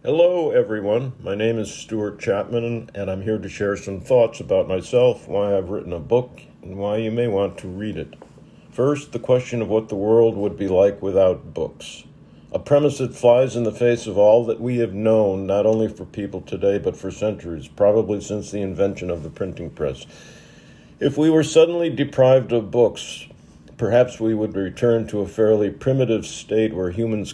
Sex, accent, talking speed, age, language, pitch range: male, American, 195 wpm, 50-69, English, 100-120 Hz